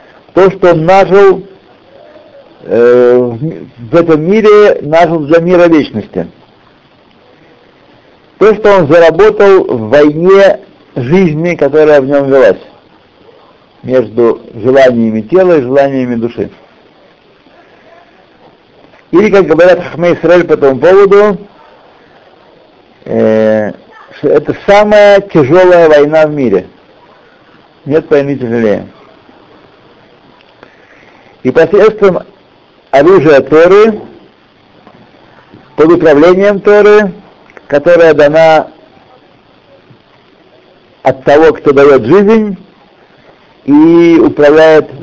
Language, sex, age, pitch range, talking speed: Russian, male, 60-79, 145-200 Hz, 85 wpm